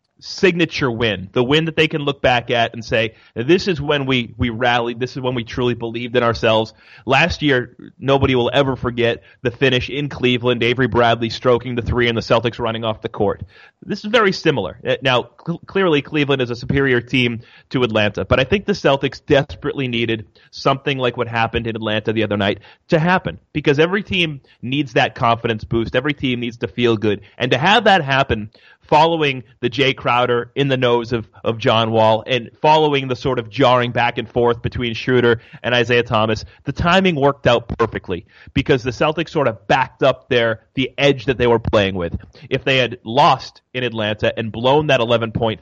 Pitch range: 115-140 Hz